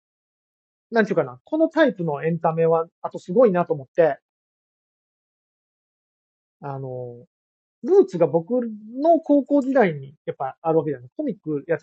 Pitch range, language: 145-240 Hz, Japanese